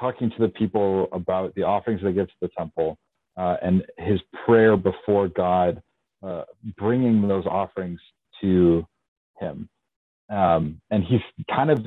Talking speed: 145 wpm